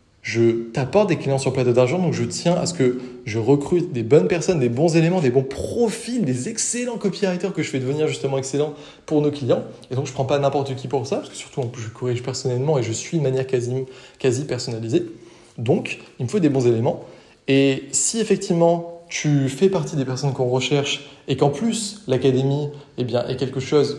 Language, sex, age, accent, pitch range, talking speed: French, male, 20-39, French, 125-155 Hz, 215 wpm